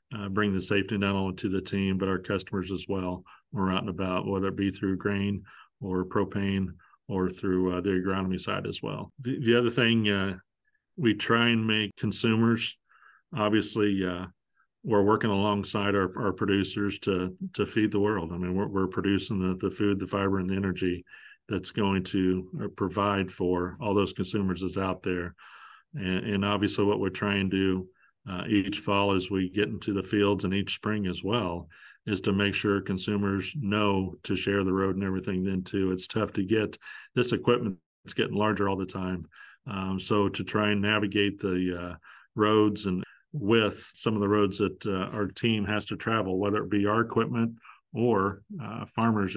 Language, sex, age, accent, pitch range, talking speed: English, male, 40-59, American, 95-105 Hz, 190 wpm